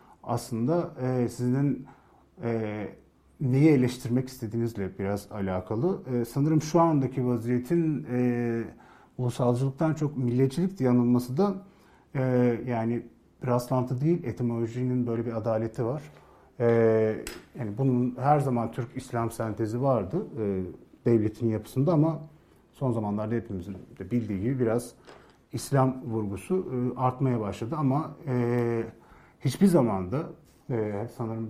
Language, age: Turkish, 40-59